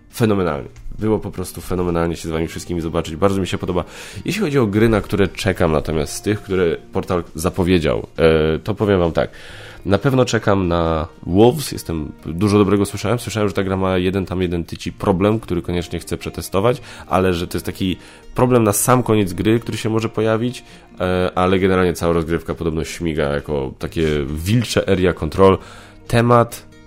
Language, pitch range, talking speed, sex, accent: Polish, 80-100 Hz, 180 wpm, male, native